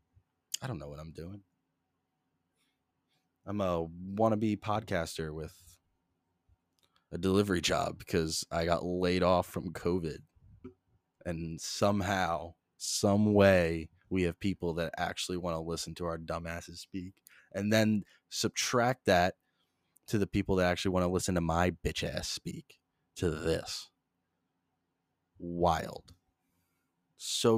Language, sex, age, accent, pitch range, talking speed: English, male, 20-39, American, 85-110 Hz, 130 wpm